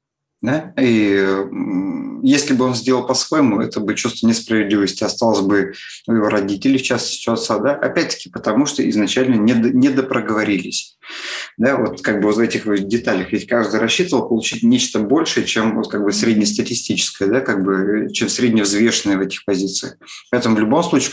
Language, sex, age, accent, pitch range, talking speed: Russian, male, 30-49, native, 100-120 Hz, 170 wpm